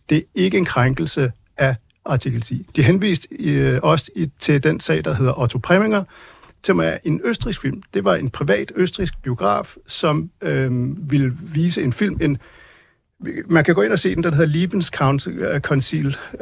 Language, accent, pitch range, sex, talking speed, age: Danish, native, 135-165 Hz, male, 185 wpm, 60-79